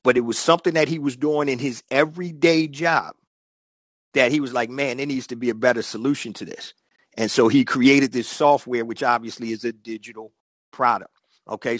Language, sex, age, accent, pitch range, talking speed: English, male, 50-69, American, 125-155 Hz, 200 wpm